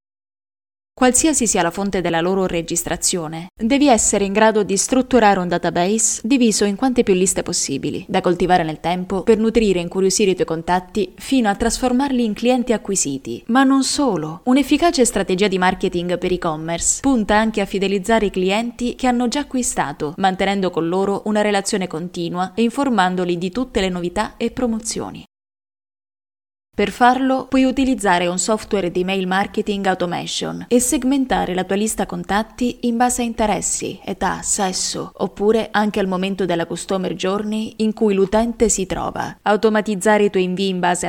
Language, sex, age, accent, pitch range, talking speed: Italian, female, 20-39, native, 180-230 Hz, 160 wpm